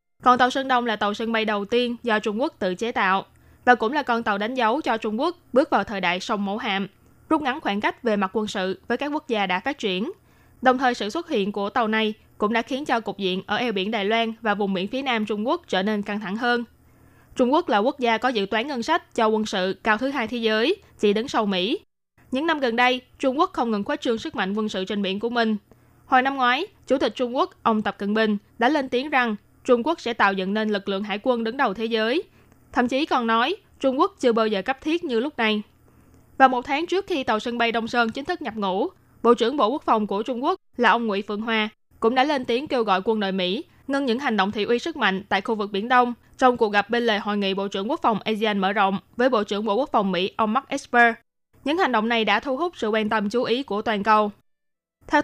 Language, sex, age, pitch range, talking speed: Vietnamese, female, 20-39, 210-260 Hz, 275 wpm